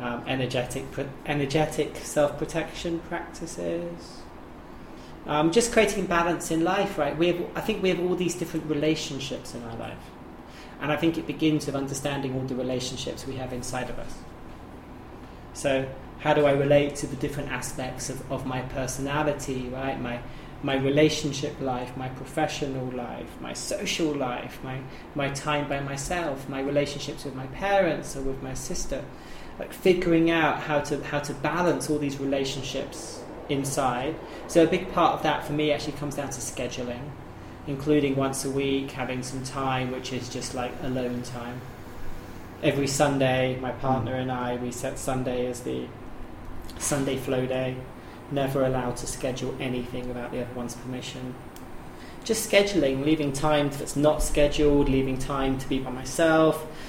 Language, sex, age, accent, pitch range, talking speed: English, male, 30-49, British, 125-150 Hz, 160 wpm